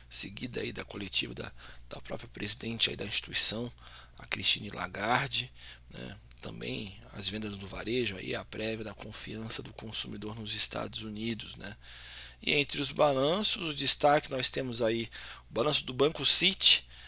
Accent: Brazilian